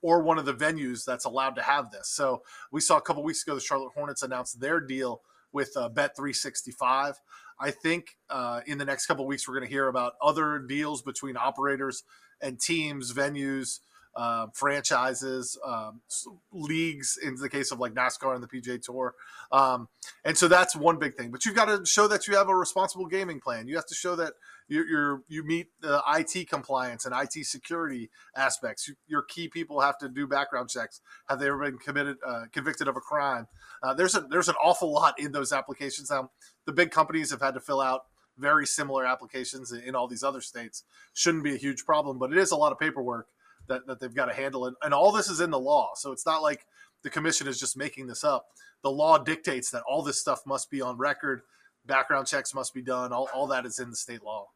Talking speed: 225 wpm